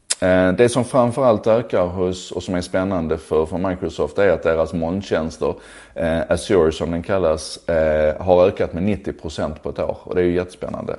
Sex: male